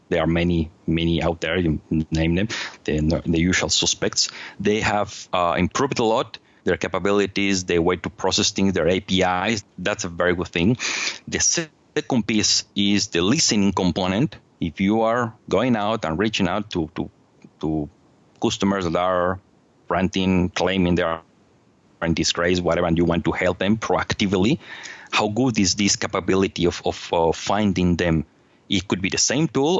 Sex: male